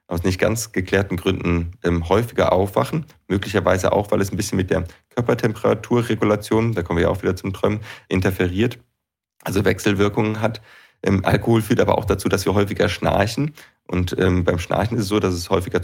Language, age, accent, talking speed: German, 30-49, German, 185 wpm